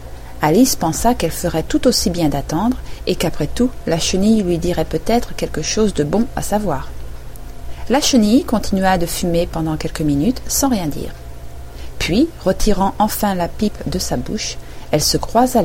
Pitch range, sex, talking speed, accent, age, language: 145-235 Hz, female, 170 wpm, French, 40-59, French